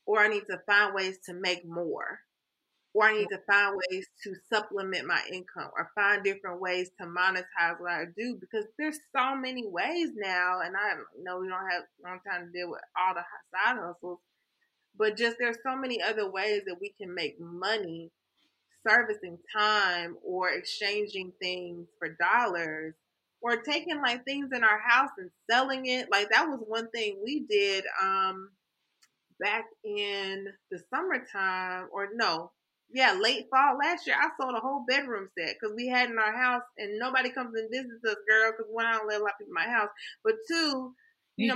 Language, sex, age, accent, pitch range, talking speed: English, female, 20-39, American, 190-265 Hz, 190 wpm